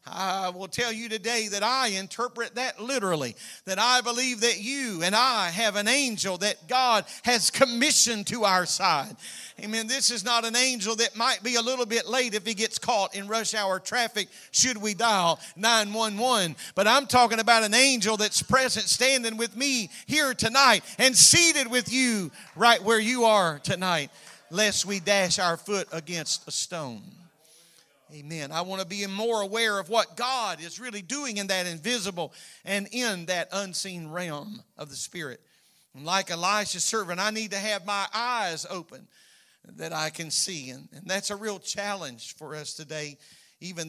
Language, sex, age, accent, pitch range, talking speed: English, male, 40-59, American, 160-225 Hz, 180 wpm